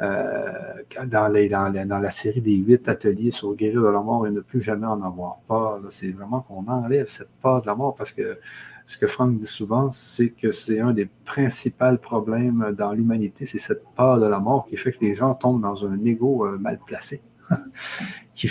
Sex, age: male, 50-69